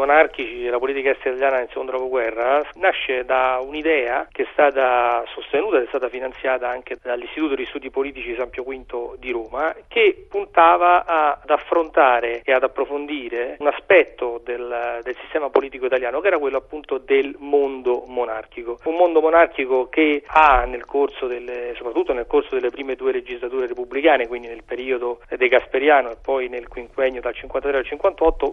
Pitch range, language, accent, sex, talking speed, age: 125-160 Hz, Italian, native, male, 170 wpm, 40-59